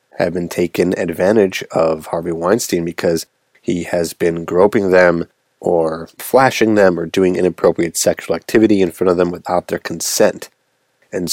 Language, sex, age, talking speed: English, male, 30-49, 155 wpm